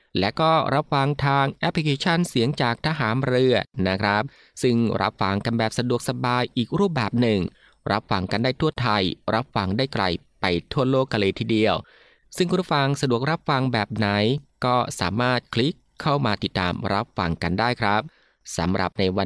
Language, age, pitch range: Thai, 20-39, 105-140 Hz